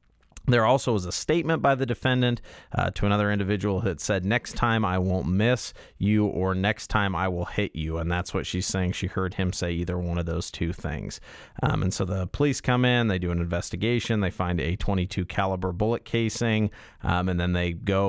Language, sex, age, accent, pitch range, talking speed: English, male, 30-49, American, 90-105 Hz, 215 wpm